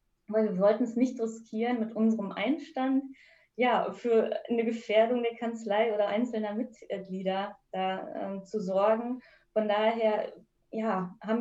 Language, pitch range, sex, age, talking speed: German, 195-225 Hz, female, 20-39, 135 wpm